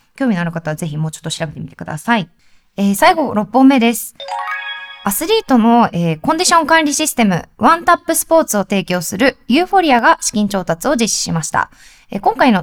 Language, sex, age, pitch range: Japanese, female, 20-39, 170-260 Hz